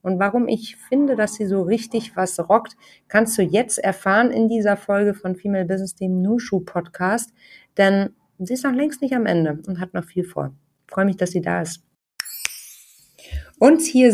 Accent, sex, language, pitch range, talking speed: German, female, German, 185-235 Hz, 185 wpm